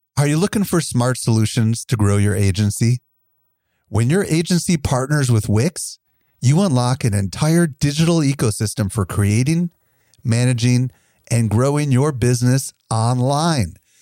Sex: male